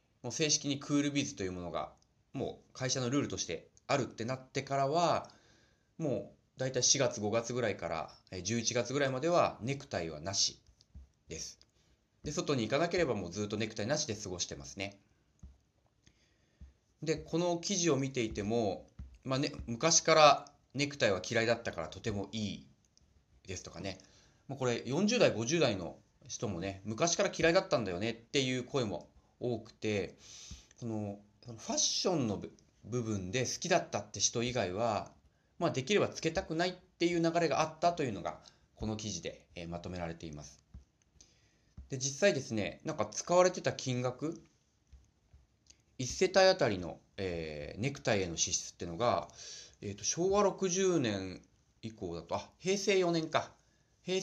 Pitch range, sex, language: 100-145 Hz, male, Japanese